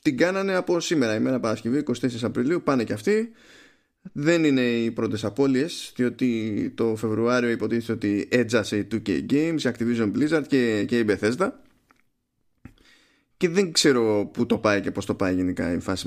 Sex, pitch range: male, 110-140 Hz